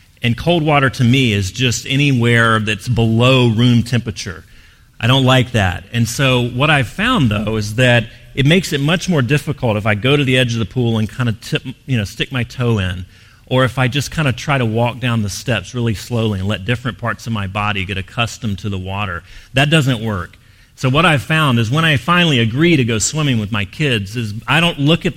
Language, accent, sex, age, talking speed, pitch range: English, American, male, 40-59, 235 wpm, 105-140 Hz